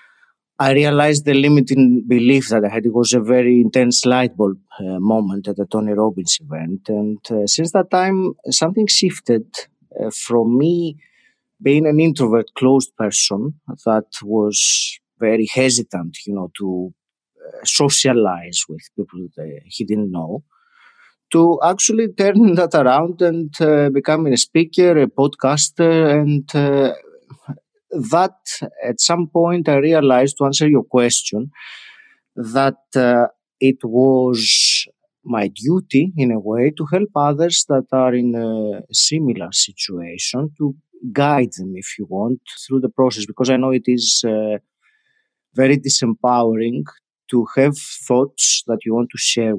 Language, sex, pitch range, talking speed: English, male, 110-145 Hz, 145 wpm